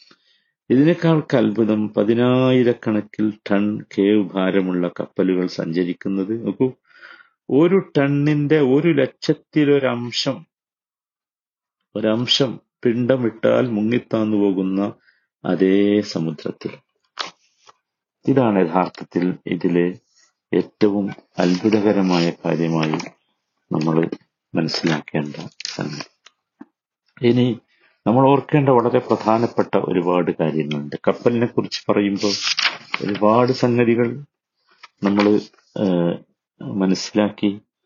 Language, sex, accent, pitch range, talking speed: Malayalam, male, native, 95-120 Hz, 65 wpm